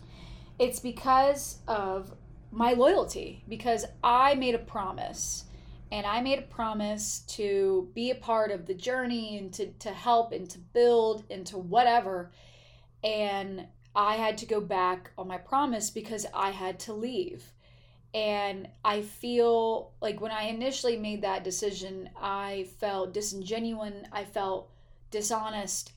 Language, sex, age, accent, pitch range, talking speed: English, female, 20-39, American, 190-230 Hz, 140 wpm